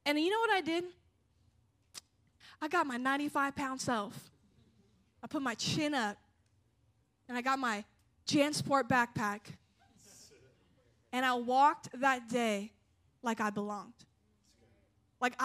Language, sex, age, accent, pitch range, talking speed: English, female, 10-29, American, 235-290 Hz, 120 wpm